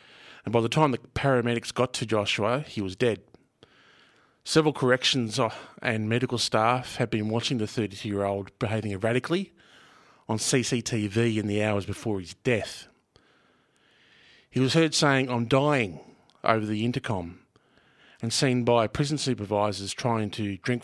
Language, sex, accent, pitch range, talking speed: English, male, Australian, 110-130 Hz, 140 wpm